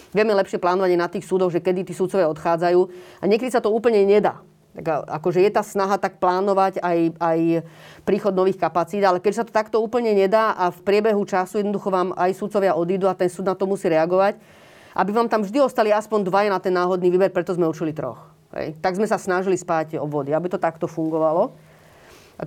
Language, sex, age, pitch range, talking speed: Slovak, female, 30-49, 170-200 Hz, 210 wpm